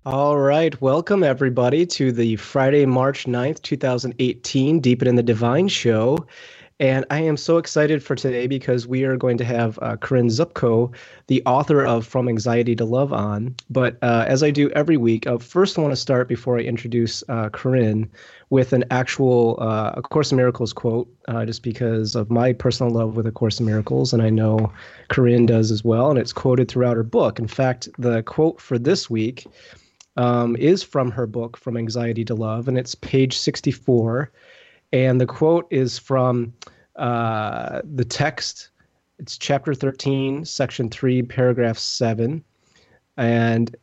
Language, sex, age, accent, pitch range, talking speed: English, male, 30-49, American, 115-135 Hz, 170 wpm